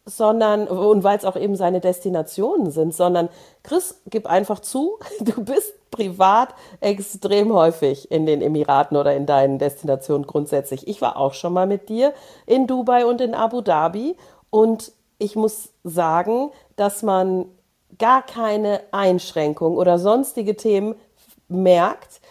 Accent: German